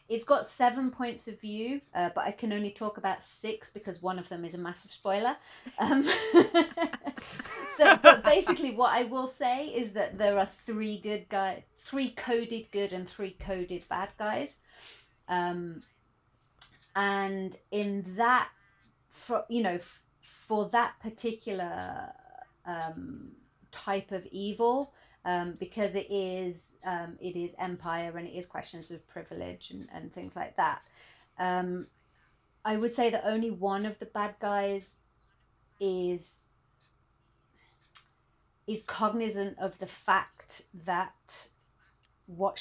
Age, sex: 30-49, female